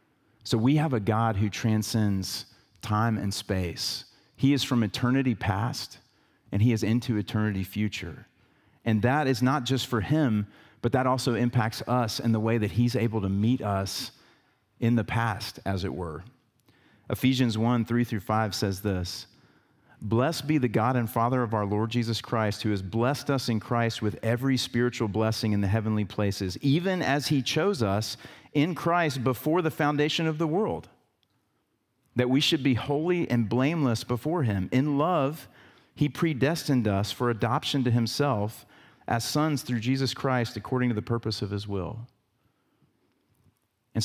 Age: 40-59